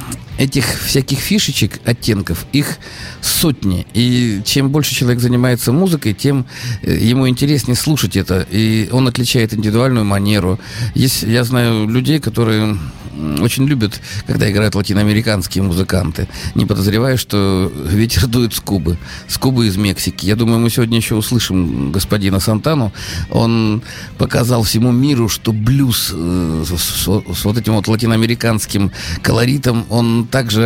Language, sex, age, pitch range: Russian, male, 50-69, 100-125 Hz